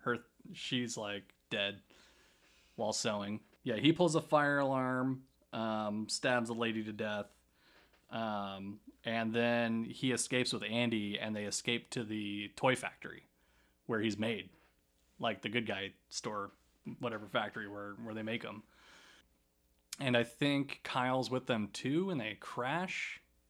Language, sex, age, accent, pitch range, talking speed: English, male, 30-49, American, 105-125 Hz, 145 wpm